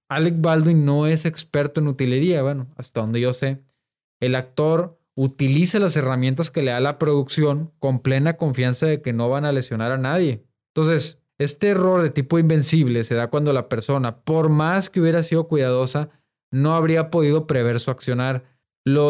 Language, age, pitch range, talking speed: Spanish, 20-39, 125-155 Hz, 180 wpm